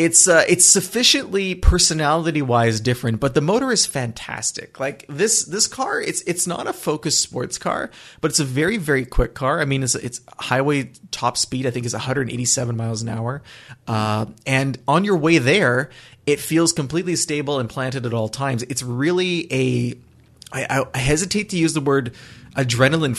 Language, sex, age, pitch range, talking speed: English, male, 30-49, 125-155 Hz, 180 wpm